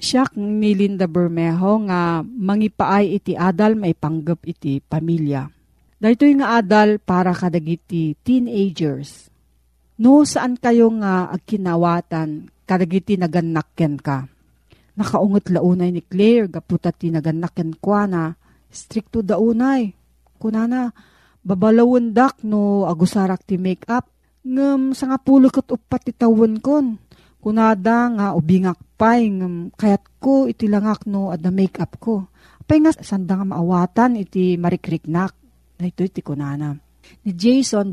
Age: 40-59